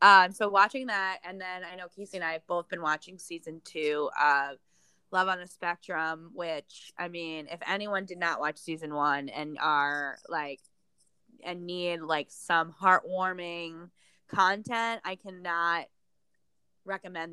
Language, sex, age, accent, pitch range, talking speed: English, female, 20-39, American, 165-195 Hz, 150 wpm